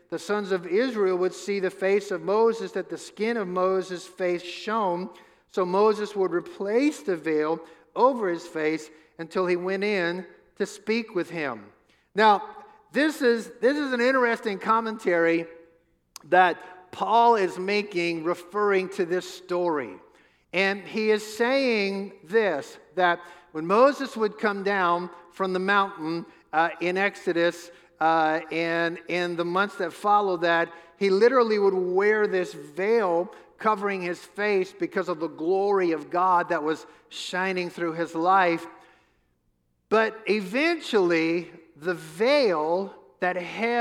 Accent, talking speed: American, 140 wpm